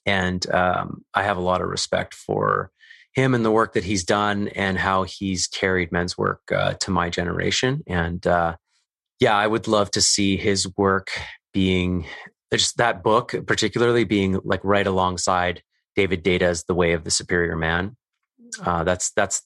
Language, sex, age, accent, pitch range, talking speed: English, male, 30-49, American, 90-110 Hz, 175 wpm